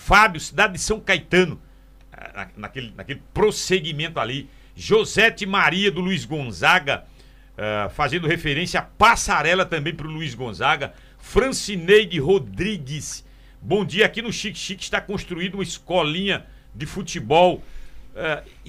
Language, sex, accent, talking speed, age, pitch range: Portuguese, male, Brazilian, 125 wpm, 60-79, 140-195 Hz